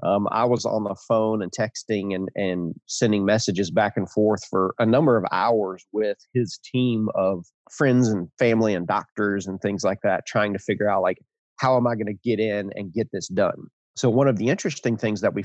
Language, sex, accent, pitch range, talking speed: English, male, American, 100-120 Hz, 220 wpm